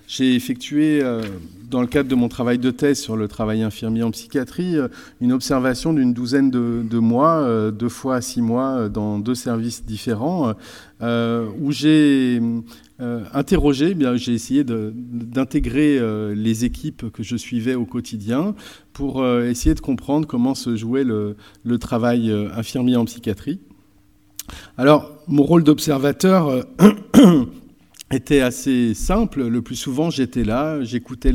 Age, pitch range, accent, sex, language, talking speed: 40-59, 115-140 Hz, French, male, French, 135 wpm